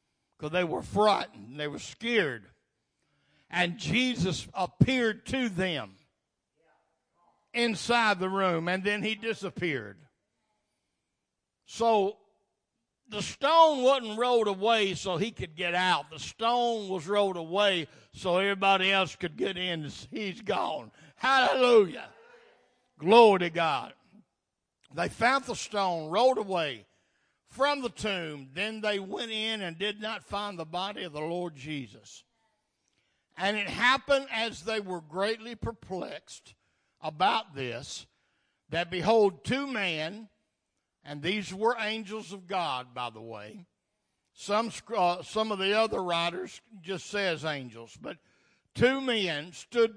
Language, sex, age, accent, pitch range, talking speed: English, male, 60-79, American, 170-225 Hz, 130 wpm